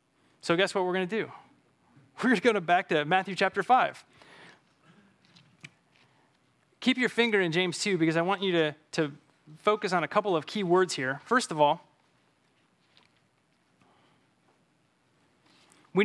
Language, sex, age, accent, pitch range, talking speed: English, male, 20-39, American, 165-215 Hz, 150 wpm